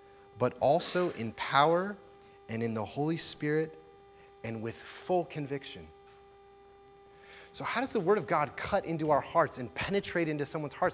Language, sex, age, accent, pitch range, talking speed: English, male, 30-49, American, 150-240 Hz, 160 wpm